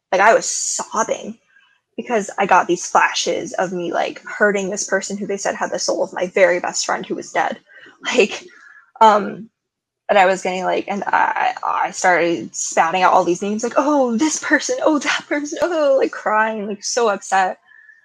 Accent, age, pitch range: American, 10-29, 180-235 Hz